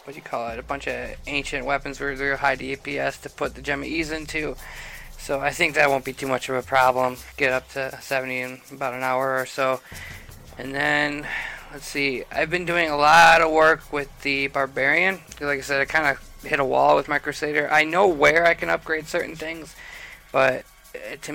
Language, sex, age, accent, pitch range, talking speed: English, male, 20-39, American, 130-155 Hz, 220 wpm